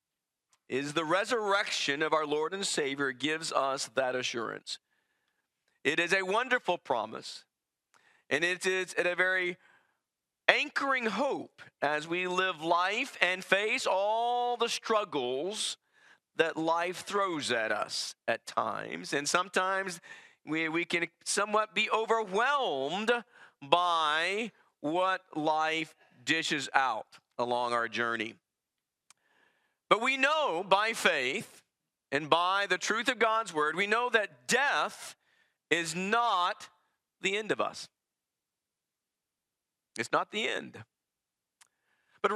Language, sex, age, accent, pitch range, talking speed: English, male, 50-69, American, 165-235 Hz, 120 wpm